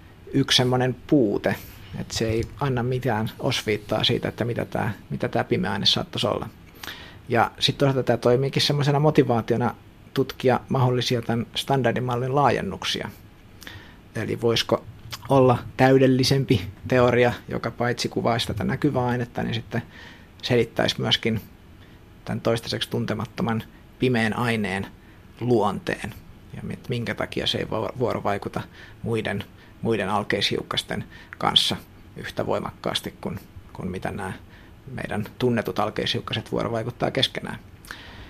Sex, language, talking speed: male, Finnish, 115 wpm